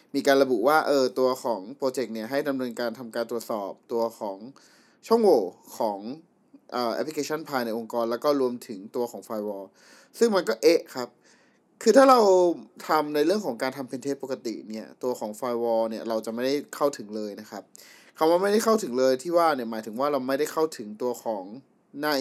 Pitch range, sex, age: 115-150 Hz, male, 20-39